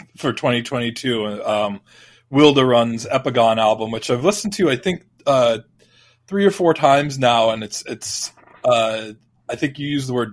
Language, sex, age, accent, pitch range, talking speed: English, male, 20-39, American, 115-135 Hz, 175 wpm